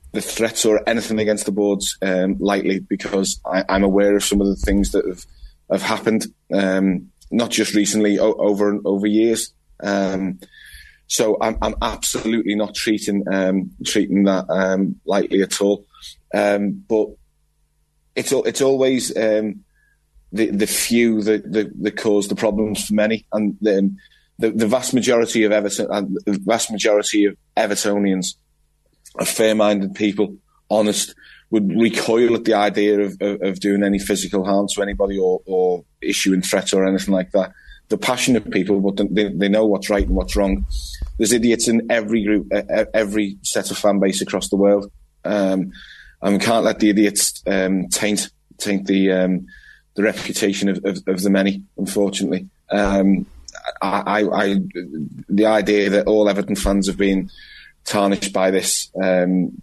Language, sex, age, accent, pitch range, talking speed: English, male, 20-39, British, 95-105 Hz, 160 wpm